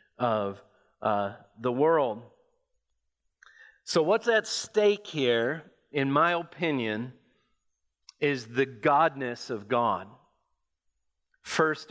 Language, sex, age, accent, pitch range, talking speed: English, male, 40-59, American, 140-220 Hz, 90 wpm